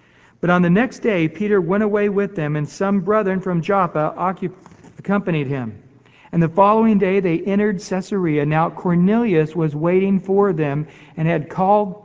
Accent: American